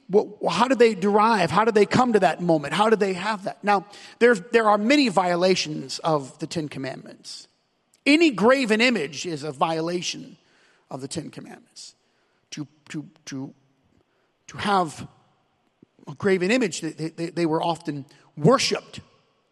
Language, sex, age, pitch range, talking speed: English, male, 40-59, 185-250 Hz, 155 wpm